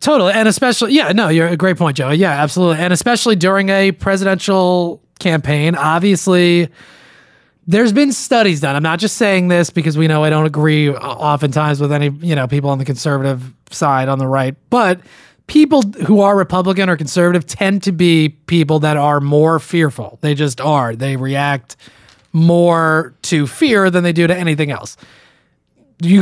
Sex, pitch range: male, 150-195 Hz